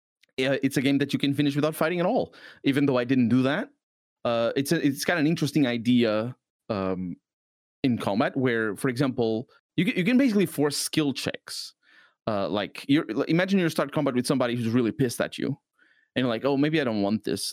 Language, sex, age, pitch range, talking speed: English, male, 30-49, 110-145 Hz, 220 wpm